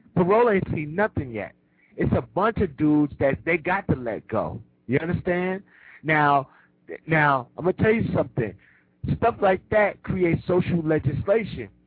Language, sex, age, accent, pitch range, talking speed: English, male, 50-69, American, 135-180 Hz, 160 wpm